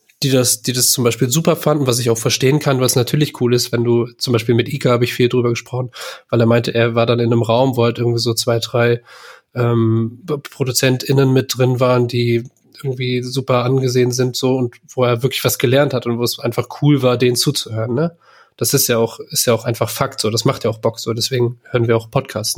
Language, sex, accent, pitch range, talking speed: German, male, German, 120-135 Hz, 240 wpm